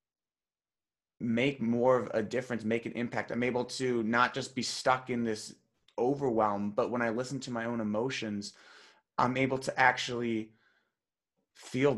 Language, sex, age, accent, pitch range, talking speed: English, male, 20-39, American, 115-140 Hz, 155 wpm